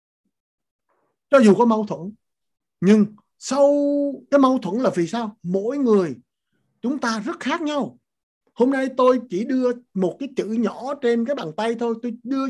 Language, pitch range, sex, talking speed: Vietnamese, 190-260 Hz, male, 175 wpm